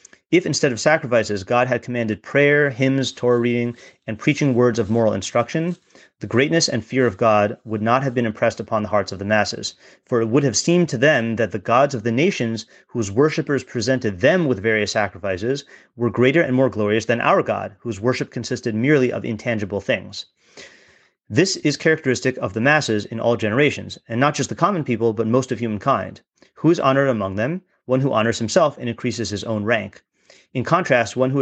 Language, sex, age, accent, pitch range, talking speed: English, male, 30-49, American, 110-135 Hz, 200 wpm